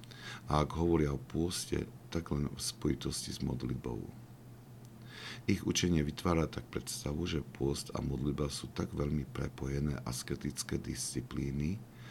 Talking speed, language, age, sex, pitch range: 135 wpm, Slovak, 50-69, male, 70-95 Hz